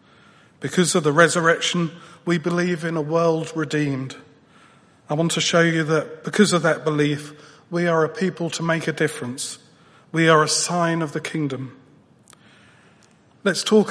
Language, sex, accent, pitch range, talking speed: English, male, British, 150-170 Hz, 160 wpm